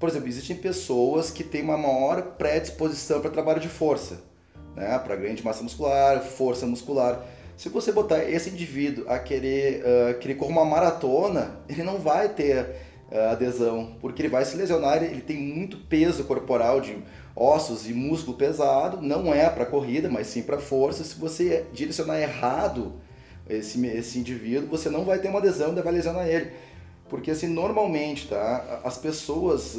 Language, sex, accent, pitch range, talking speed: Portuguese, male, Brazilian, 120-155 Hz, 165 wpm